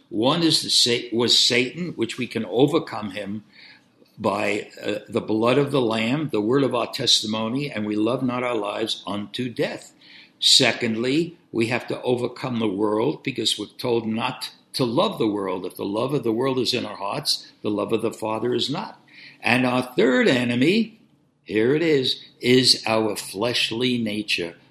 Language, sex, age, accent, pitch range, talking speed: English, male, 60-79, American, 110-145 Hz, 175 wpm